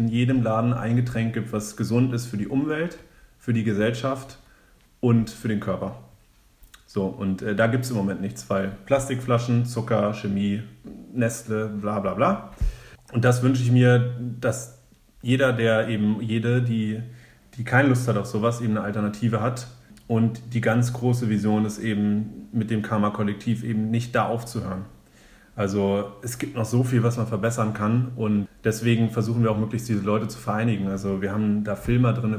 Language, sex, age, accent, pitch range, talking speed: German, male, 30-49, German, 105-120 Hz, 180 wpm